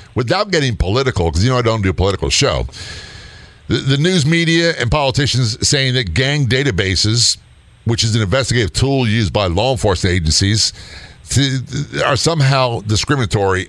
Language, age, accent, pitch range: English, 50-69, American, 95-130 Hz